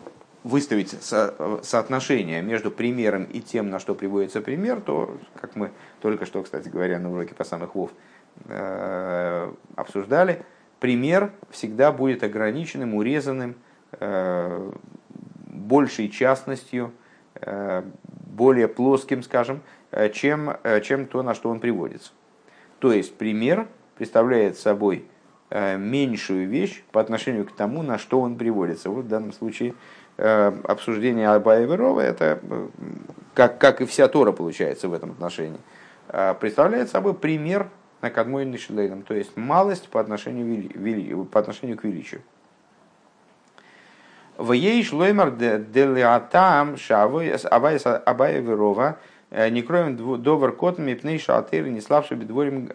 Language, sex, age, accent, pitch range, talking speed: Russian, male, 50-69, native, 105-145 Hz, 120 wpm